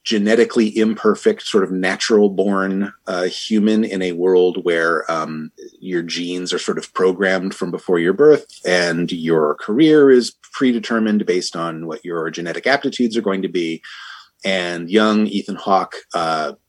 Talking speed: 155 wpm